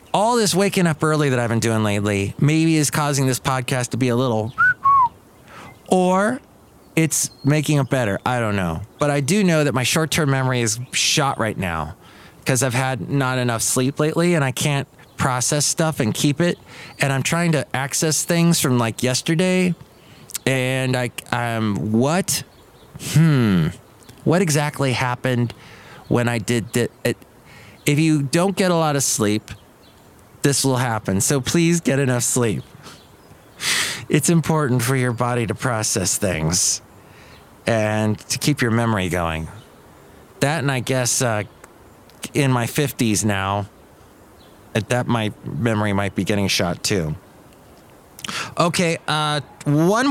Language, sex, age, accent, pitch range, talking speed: English, male, 30-49, American, 110-155 Hz, 150 wpm